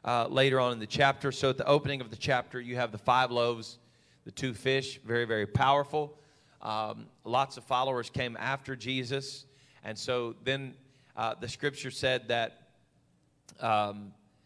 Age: 40-59